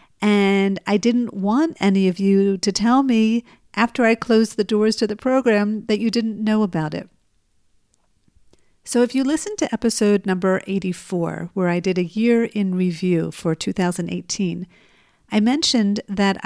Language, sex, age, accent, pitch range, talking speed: English, female, 50-69, American, 180-220 Hz, 160 wpm